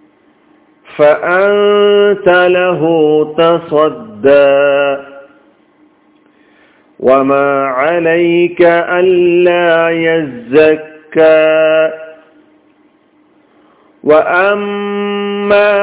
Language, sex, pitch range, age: Malayalam, male, 155-200 Hz, 50-69